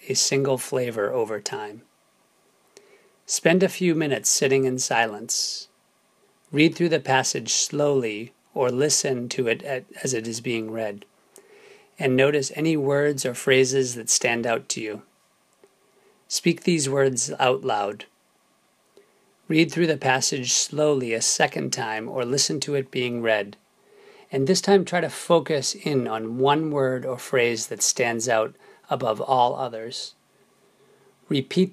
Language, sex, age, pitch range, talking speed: English, male, 40-59, 130-165 Hz, 140 wpm